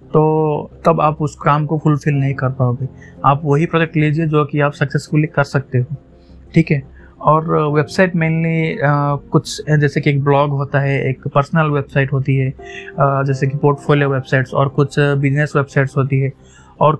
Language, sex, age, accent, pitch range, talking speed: Hindi, male, 20-39, native, 135-155 Hz, 175 wpm